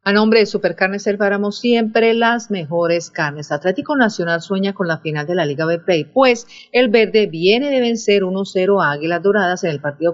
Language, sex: Spanish, female